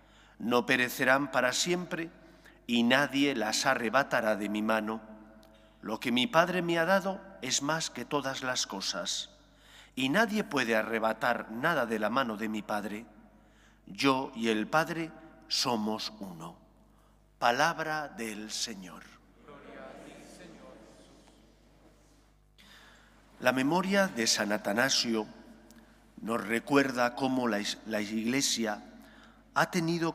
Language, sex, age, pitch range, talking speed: English, male, 50-69, 110-160 Hz, 115 wpm